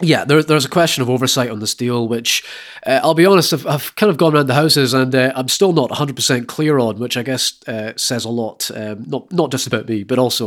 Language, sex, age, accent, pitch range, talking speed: English, male, 30-49, British, 110-130 Hz, 265 wpm